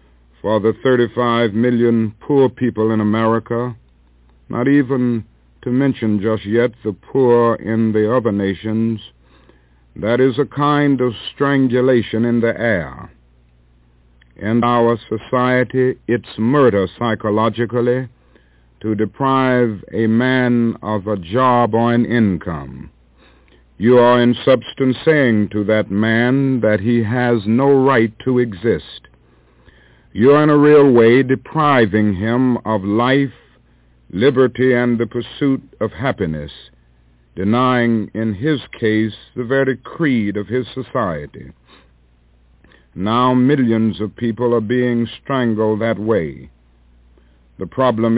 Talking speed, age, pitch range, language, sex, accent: 120 wpm, 60-79, 95-125 Hz, English, male, American